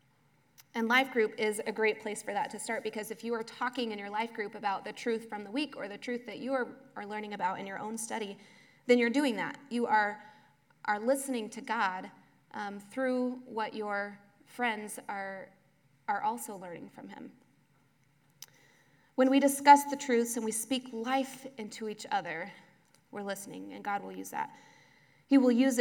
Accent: American